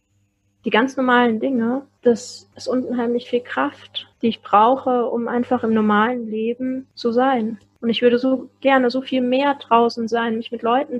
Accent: German